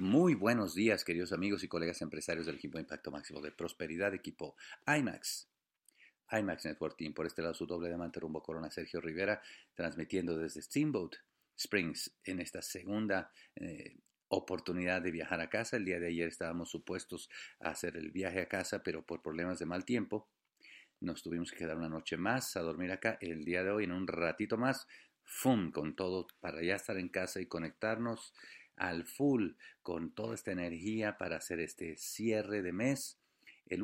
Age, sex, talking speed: 50-69, male, 180 wpm